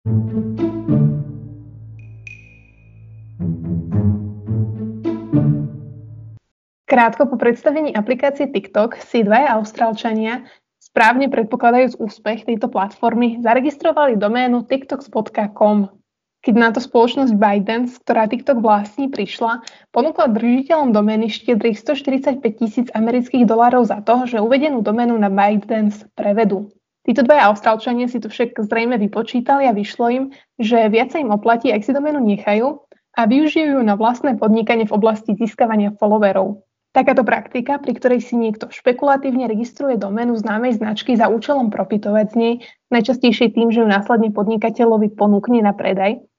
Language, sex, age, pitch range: Slovak, female, 20-39, 205-250 Hz